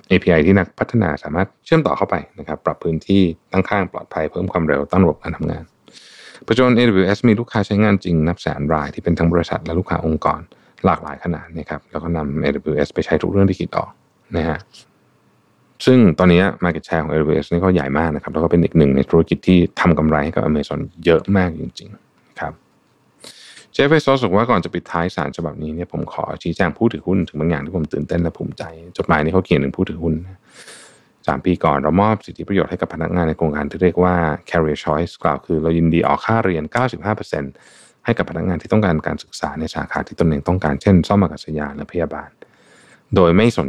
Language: Thai